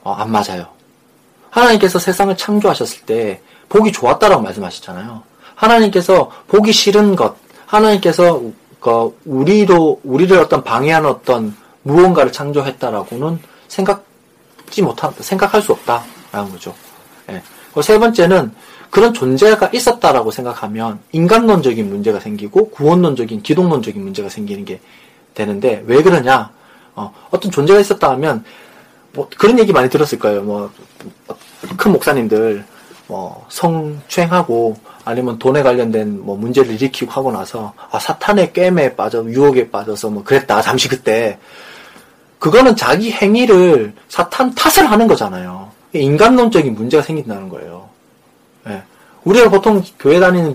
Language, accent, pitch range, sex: Korean, native, 130-210 Hz, male